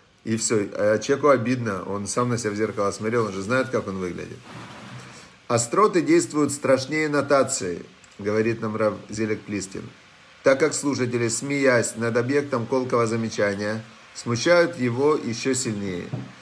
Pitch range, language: 115-155 Hz, Russian